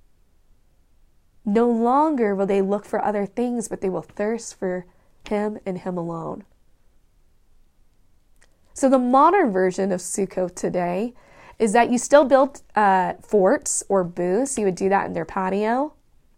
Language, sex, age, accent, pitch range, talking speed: English, female, 20-39, American, 185-240 Hz, 145 wpm